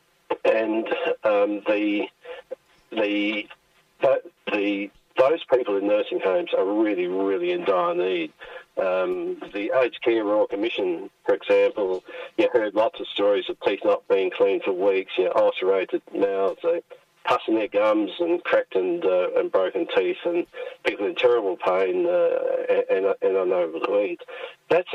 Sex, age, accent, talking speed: male, 50-69, Australian, 155 wpm